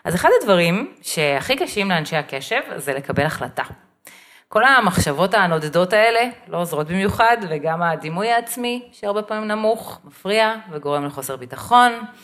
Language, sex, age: Hebrew, female, 30-49